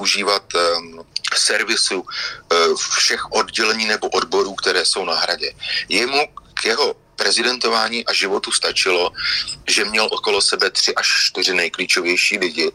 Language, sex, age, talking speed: Slovak, male, 40-59, 120 wpm